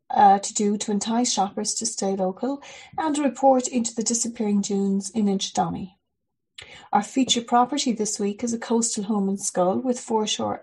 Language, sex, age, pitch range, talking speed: English, female, 30-49, 200-245 Hz, 175 wpm